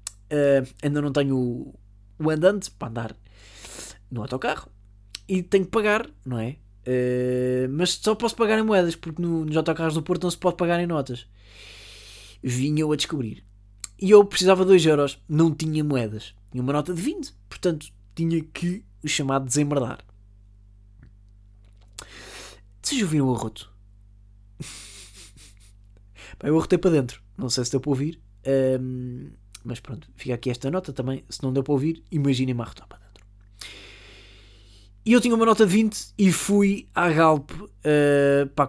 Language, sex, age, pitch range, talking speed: Portuguese, male, 20-39, 105-165 Hz, 160 wpm